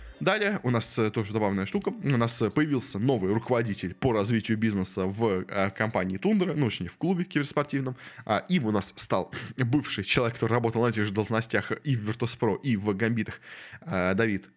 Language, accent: Russian, native